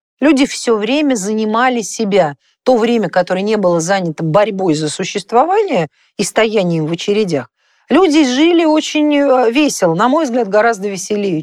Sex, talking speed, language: female, 140 wpm, Russian